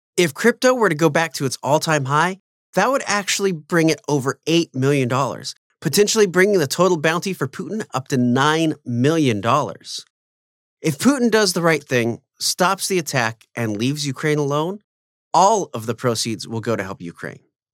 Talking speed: 175 wpm